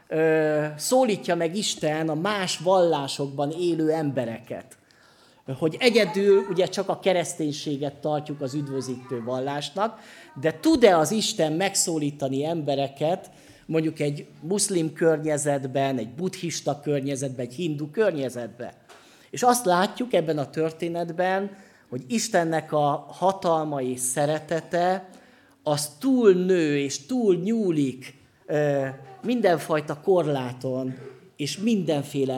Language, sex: Hungarian, male